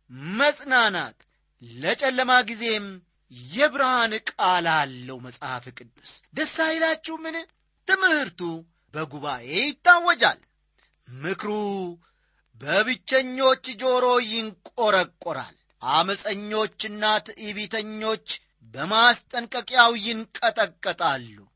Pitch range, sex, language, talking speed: 160-260 Hz, male, Amharic, 60 wpm